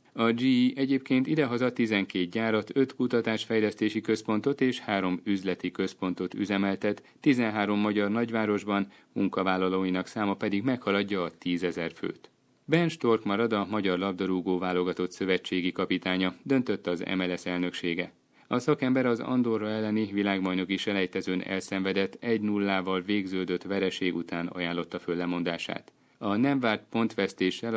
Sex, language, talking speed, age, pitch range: male, Hungarian, 120 wpm, 30-49, 90-110 Hz